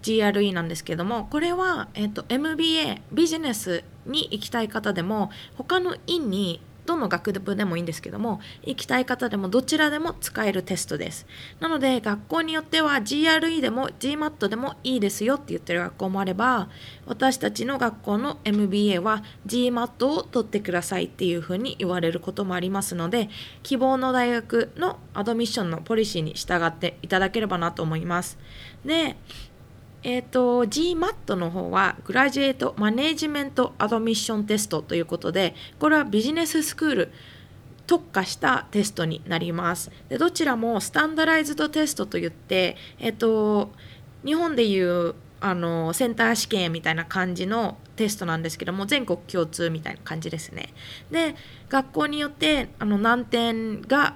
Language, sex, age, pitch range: Japanese, female, 20-39, 180-265 Hz